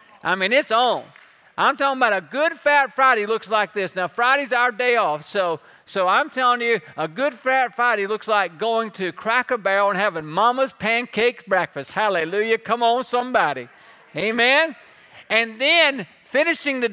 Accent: American